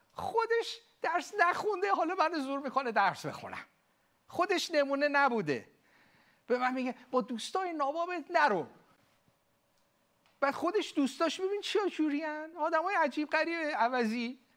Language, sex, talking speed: Persian, male, 115 wpm